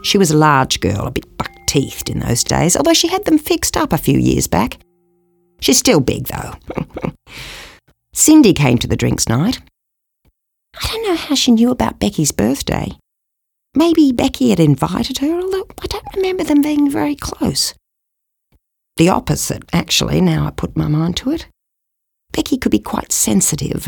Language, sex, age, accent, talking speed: English, female, 40-59, Australian, 170 wpm